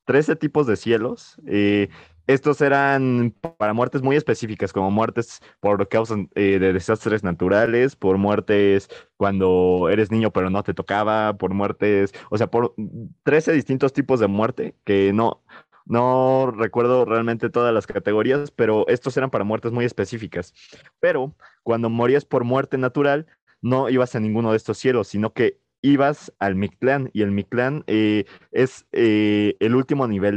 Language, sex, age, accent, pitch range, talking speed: Spanish, male, 20-39, Mexican, 100-130 Hz, 160 wpm